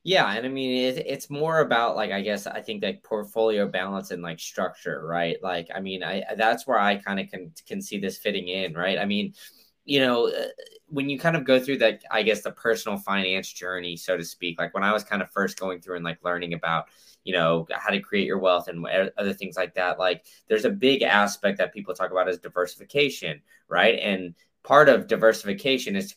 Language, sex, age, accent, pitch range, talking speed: English, male, 20-39, American, 90-125 Hz, 225 wpm